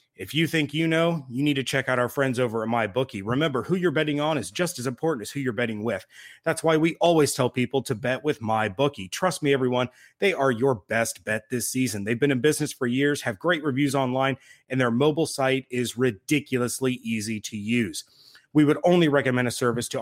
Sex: male